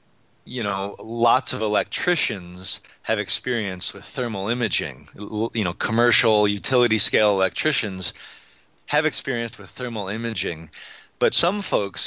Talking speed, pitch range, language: 120 wpm, 100-115 Hz, English